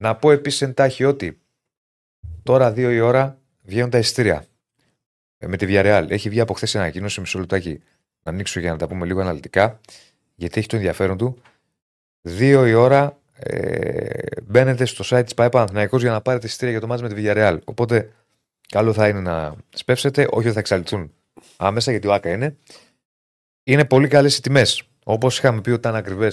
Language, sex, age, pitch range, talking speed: Greek, male, 30-49, 100-135 Hz, 185 wpm